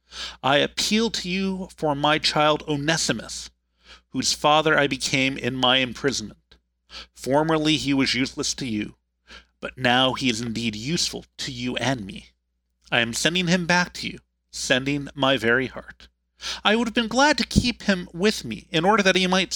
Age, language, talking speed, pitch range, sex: 40-59, English, 175 wpm, 105-175 Hz, male